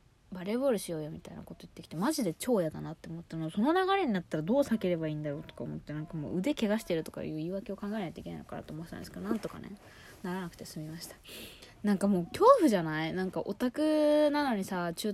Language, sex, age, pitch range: Japanese, female, 20-39, 155-210 Hz